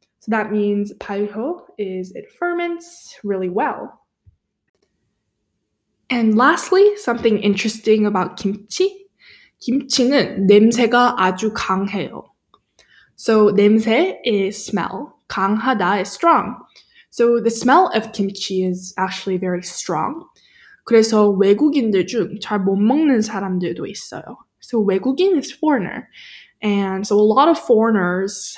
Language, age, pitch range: English, 10-29, 195-265 Hz